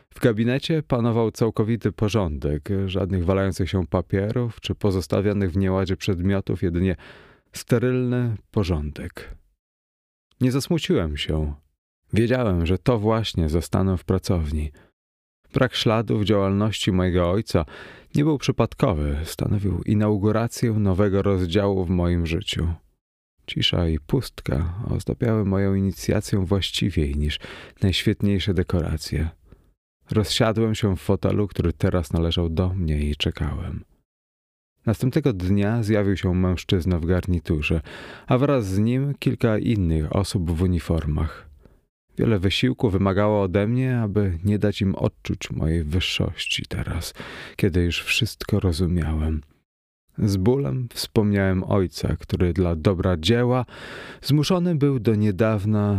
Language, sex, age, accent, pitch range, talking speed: Polish, male, 30-49, native, 85-110 Hz, 115 wpm